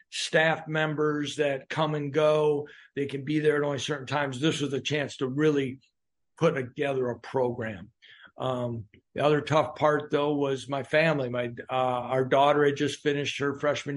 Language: English